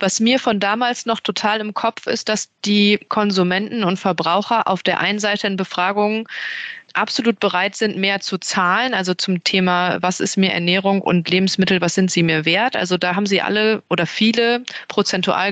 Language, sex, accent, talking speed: German, female, German, 185 wpm